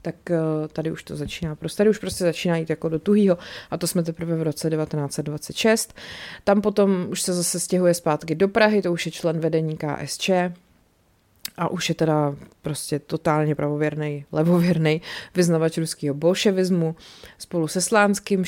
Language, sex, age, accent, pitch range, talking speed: Czech, female, 30-49, native, 160-185 Hz, 160 wpm